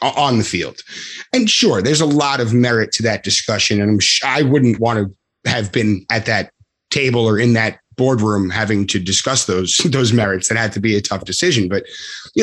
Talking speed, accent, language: 205 wpm, American, English